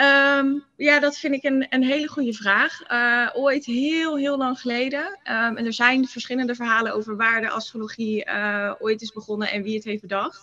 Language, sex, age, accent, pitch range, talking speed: Dutch, female, 20-39, Dutch, 210-240 Hz, 200 wpm